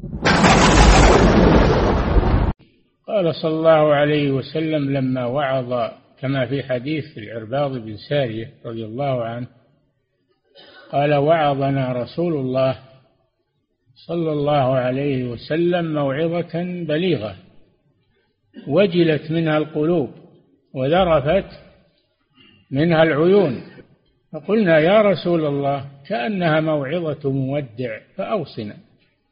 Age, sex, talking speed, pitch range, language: 50-69, male, 80 wpm, 135-160 Hz, Arabic